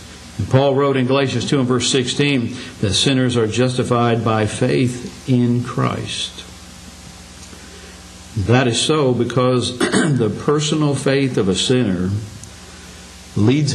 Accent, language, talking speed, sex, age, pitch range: American, English, 120 wpm, male, 60-79, 95-130 Hz